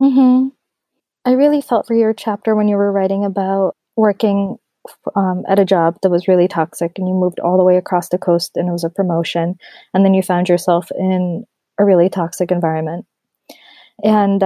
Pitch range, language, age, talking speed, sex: 180-215 Hz, English, 20-39, 190 wpm, female